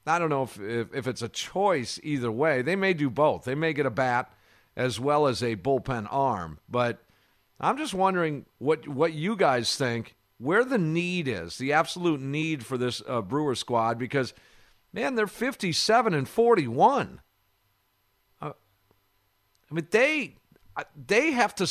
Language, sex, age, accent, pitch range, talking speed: English, male, 50-69, American, 115-165 Hz, 165 wpm